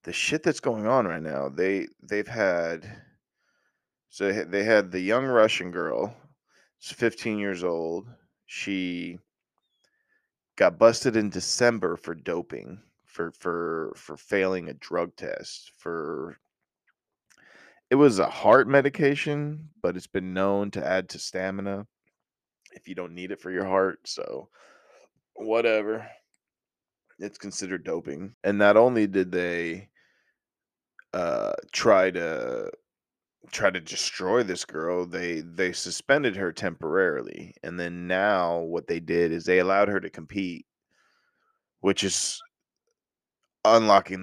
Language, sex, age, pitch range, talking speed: English, male, 20-39, 90-105 Hz, 130 wpm